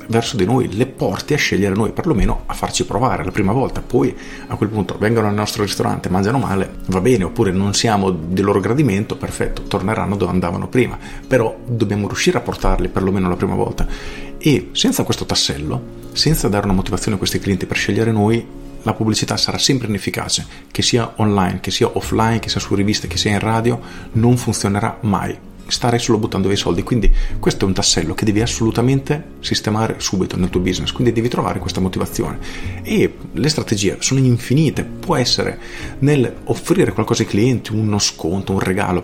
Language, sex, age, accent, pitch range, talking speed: Italian, male, 40-59, native, 95-120 Hz, 190 wpm